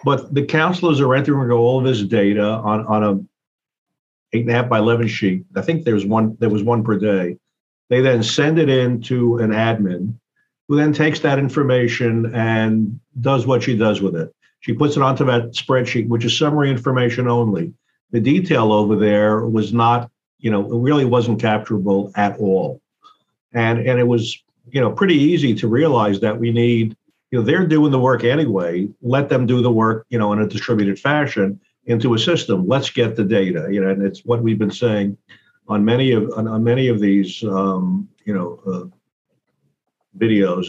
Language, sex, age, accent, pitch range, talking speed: English, male, 50-69, American, 105-130 Hz, 195 wpm